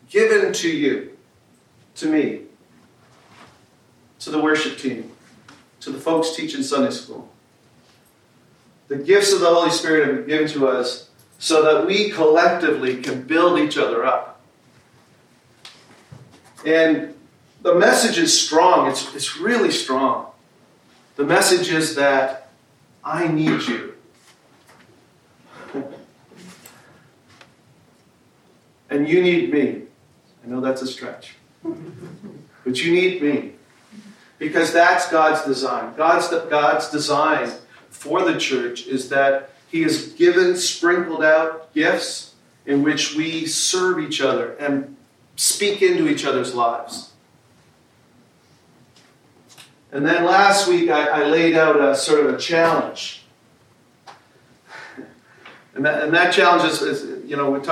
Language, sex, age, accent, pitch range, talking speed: English, male, 40-59, American, 140-175 Hz, 120 wpm